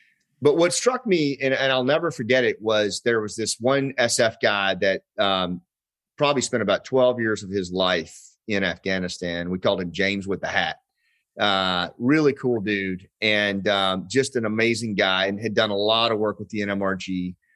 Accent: American